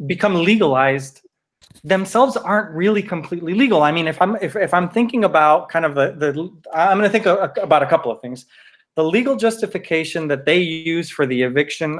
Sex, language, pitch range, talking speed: male, English, 140-185 Hz, 190 wpm